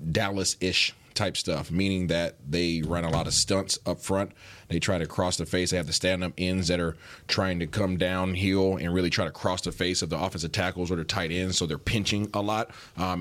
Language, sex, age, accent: English, male, 30-49, American